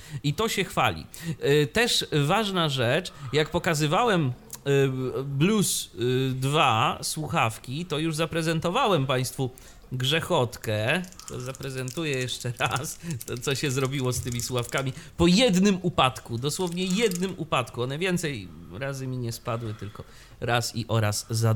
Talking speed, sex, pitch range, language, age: 120 wpm, male, 120-170 Hz, Polish, 30-49